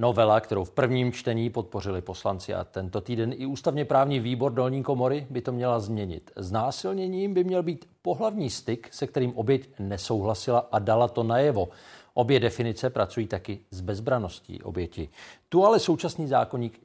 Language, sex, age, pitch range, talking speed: Czech, male, 40-59, 105-135 Hz, 165 wpm